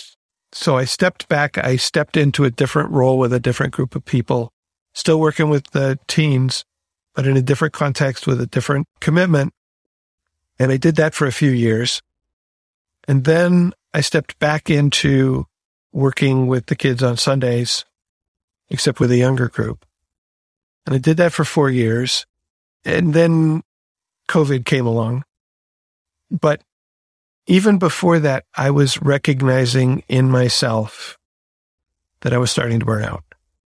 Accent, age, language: American, 50-69, English